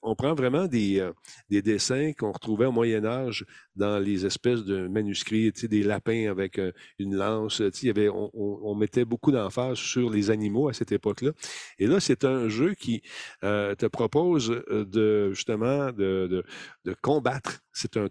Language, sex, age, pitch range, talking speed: French, male, 40-59, 105-135 Hz, 170 wpm